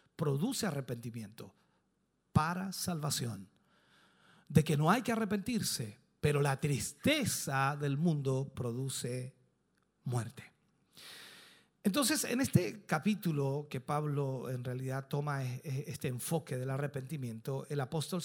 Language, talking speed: Spanish, 105 wpm